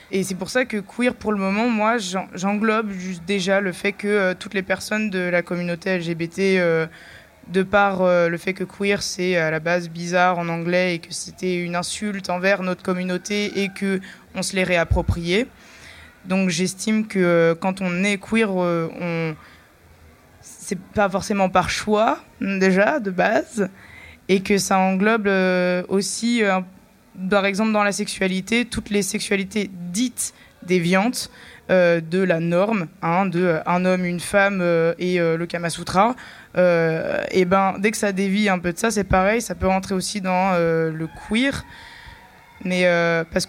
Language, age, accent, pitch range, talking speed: French, 20-39, French, 175-205 Hz, 170 wpm